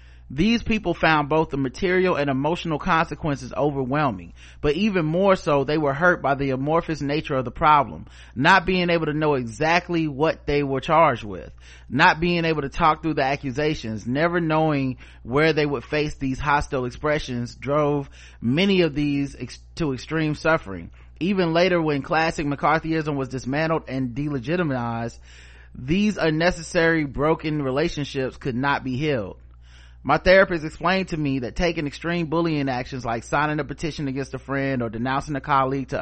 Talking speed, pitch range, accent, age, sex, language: 165 wpm, 130-160 Hz, American, 30-49, male, English